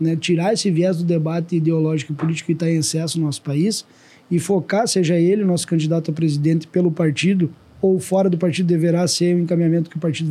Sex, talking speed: male, 215 wpm